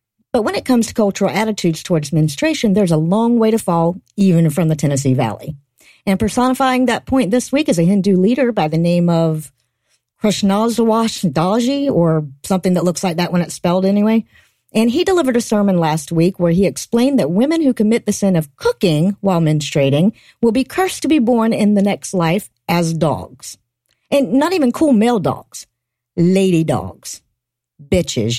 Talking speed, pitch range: 180 wpm, 155-230 Hz